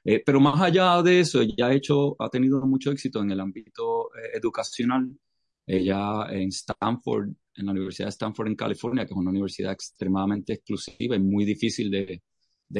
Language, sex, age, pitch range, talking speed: English, male, 30-49, 95-115 Hz, 185 wpm